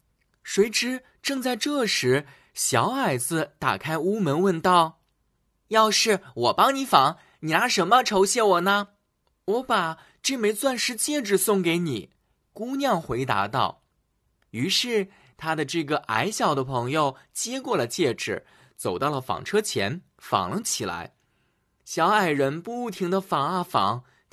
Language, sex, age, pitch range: Chinese, male, 20-39, 160-225 Hz